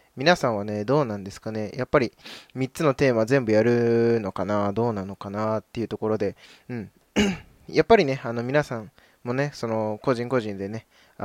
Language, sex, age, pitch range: Japanese, male, 20-39, 110-135 Hz